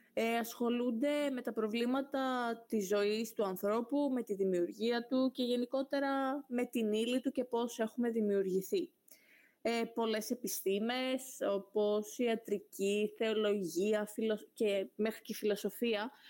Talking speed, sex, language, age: 130 wpm, female, Greek, 20-39